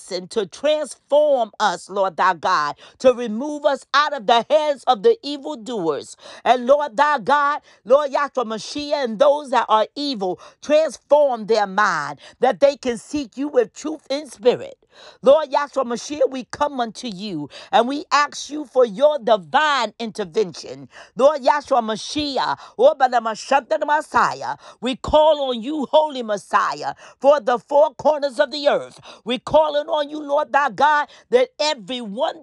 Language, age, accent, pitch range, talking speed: English, 50-69, American, 225-300 Hz, 150 wpm